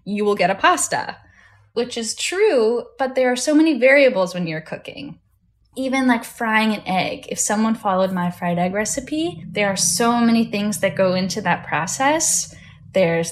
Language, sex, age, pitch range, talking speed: English, female, 10-29, 175-240 Hz, 180 wpm